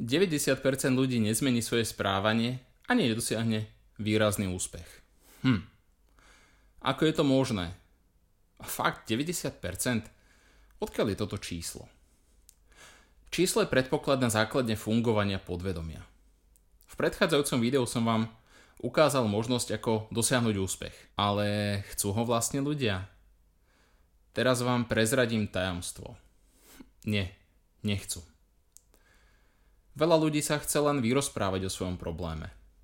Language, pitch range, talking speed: Slovak, 85-120 Hz, 110 wpm